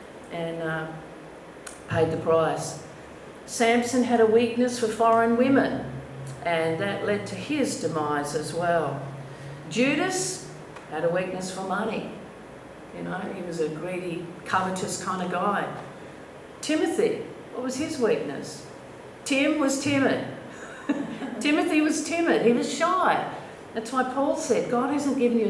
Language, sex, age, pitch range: English, female, 50-69, 170-250 Hz